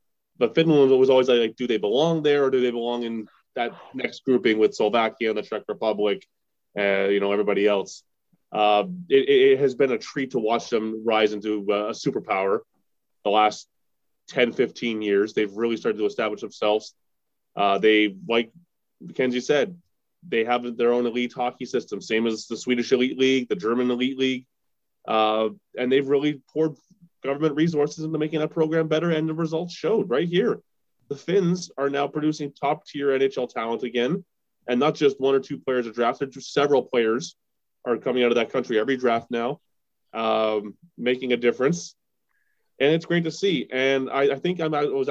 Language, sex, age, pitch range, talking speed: English, male, 20-39, 115-145 Hz, 185 wpm